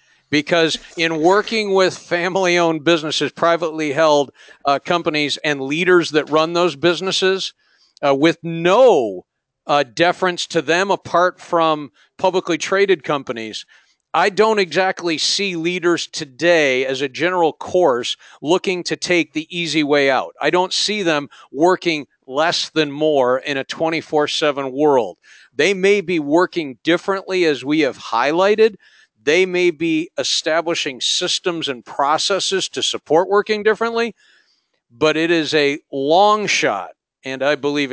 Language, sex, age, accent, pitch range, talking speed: English, male, 50-69, American, 145-180 Hz, 135 wpm